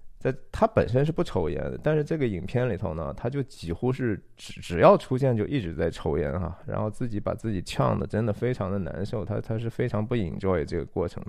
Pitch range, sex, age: 95-115 Hz, male, 20-39